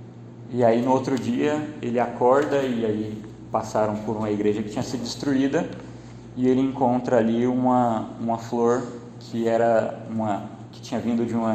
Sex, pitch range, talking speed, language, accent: male, 110-125 Hz, 165 wpm, Portuguese, Brazilian